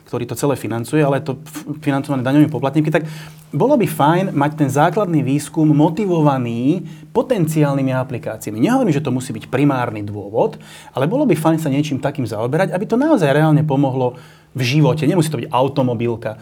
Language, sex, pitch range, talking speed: Slovak, male, 130-155 Hz, 170 wpm